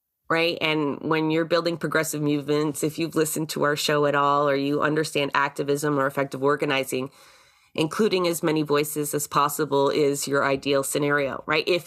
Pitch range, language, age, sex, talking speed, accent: 145-160 Hz, English, 30-49, female, 170 wpm, American